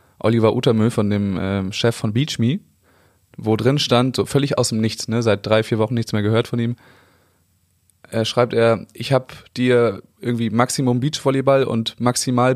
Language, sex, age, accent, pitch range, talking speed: German, male, 20-39, German, 100-125 Hz, 180 wpm